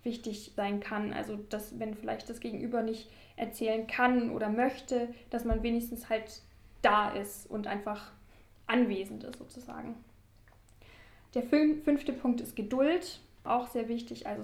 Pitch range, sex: 220-245 Hz, female